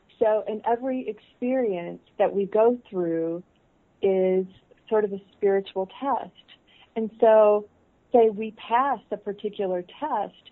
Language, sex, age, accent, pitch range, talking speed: English, female, 40-59, American, 190-225 Hz, 125 wpm